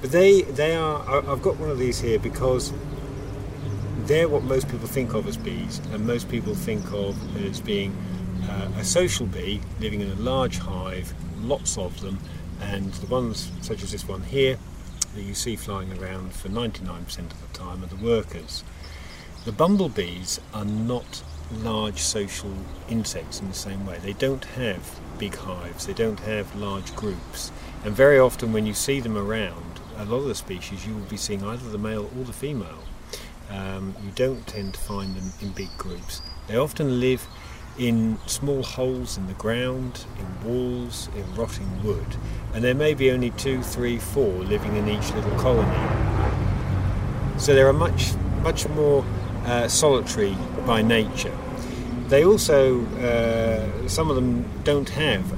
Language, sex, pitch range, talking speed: English, male, 95-120 Hz, 175 wpm